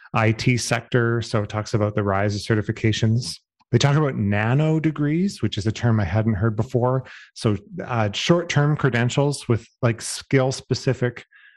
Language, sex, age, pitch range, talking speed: English, male, 30-49, 105-130 Hz, 155 wpm